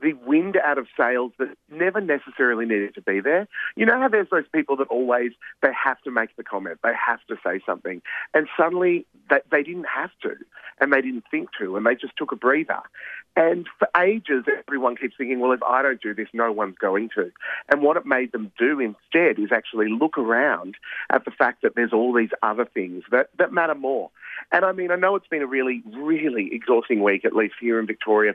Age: 40-59